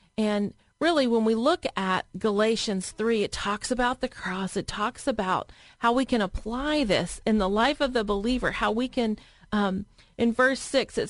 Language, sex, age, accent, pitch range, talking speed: English, female, 40-59, American, 205-265 Hz, 190 wpm